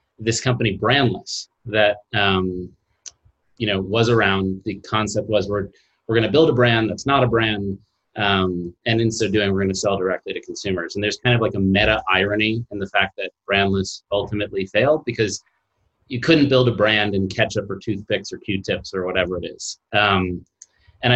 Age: 30-49